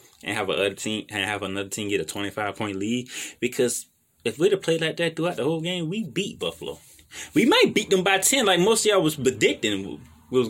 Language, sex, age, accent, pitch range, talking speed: English, male, 20-39, American, 105-160 Hz, 235 wpm